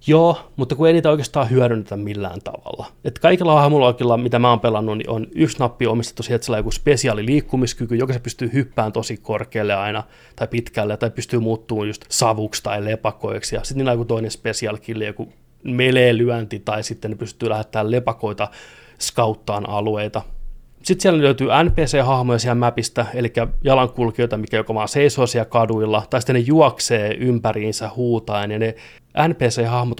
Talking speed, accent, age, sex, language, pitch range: 160 wpm, native, 30-49, male, Finnish, 110-130 Hz